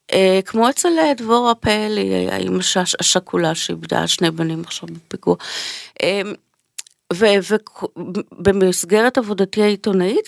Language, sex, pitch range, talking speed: Hebrew, female, 185-235 Hz, 100 wpm